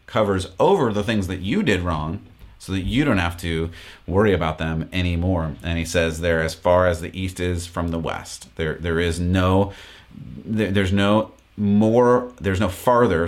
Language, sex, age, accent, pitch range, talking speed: English, male, 30-49, American, 85-100 Hz, 185 wpm